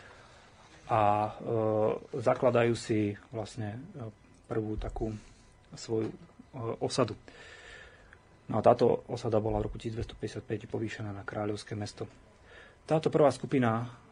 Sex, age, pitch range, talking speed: male, 30-49, 110-125 Hz, 105 wpm